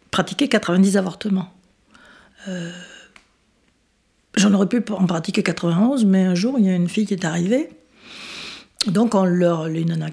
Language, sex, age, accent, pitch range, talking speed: French, female, 60-79, French, 170-215 Hz, 150 wpm